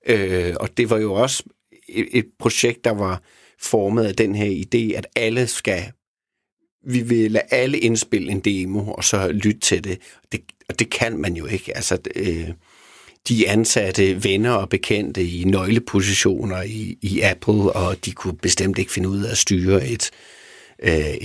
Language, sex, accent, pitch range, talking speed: Danish, male, native, 95-115 Hz, 175 wpm